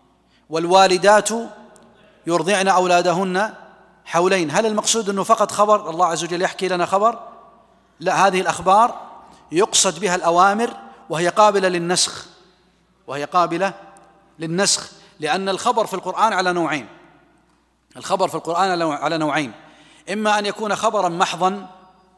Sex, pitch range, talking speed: male, 165-200 Hz, 115 wpm